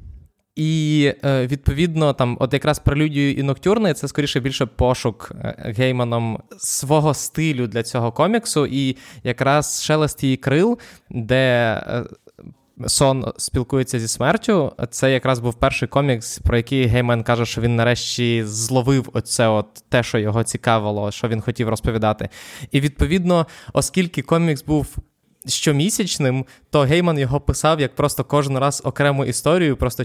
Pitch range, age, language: 120-145 Hz, 20-39, Ukrainian